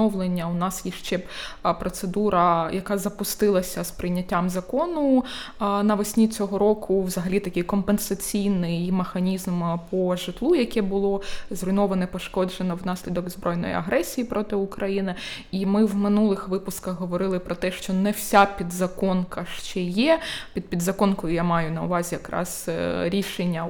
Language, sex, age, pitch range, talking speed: Ukrainian, female, 20-39, 180-210 Hz, 125 wpm